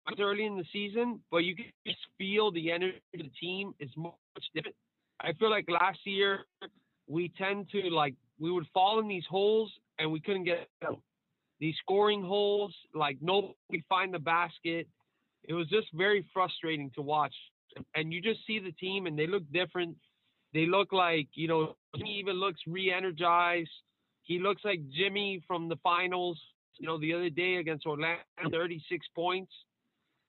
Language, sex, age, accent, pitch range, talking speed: English, male, 30-49, American, 160-195 Hz, 175 wpm